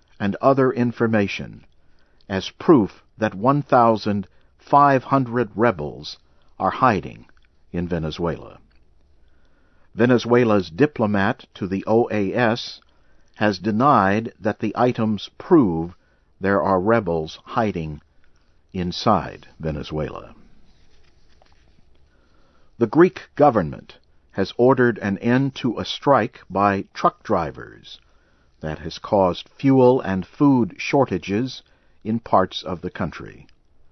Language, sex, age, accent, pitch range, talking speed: English, male, 60-79, American, 75-120 Hz, 95 wpm